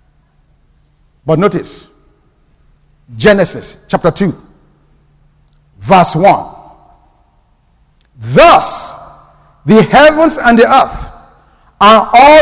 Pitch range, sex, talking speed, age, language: 215-325 Hz, male, 70 wpm, 50-69, English